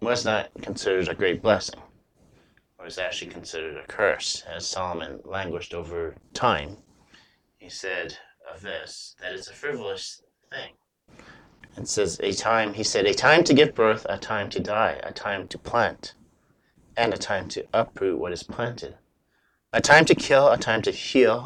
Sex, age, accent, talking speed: male, 30-49, American, 170 wpm